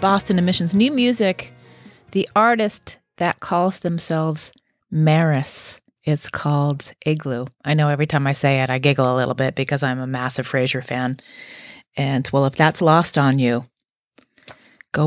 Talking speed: 155 wpm